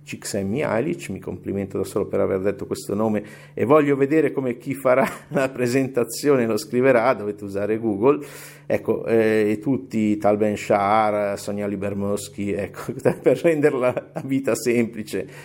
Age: 50-69